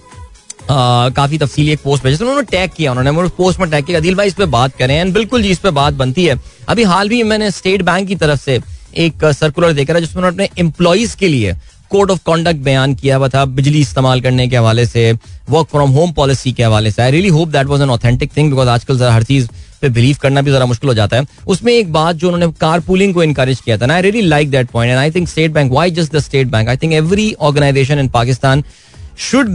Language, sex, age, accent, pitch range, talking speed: Hindi, male, 20-39, native, 135-185 Hz, 200 wpm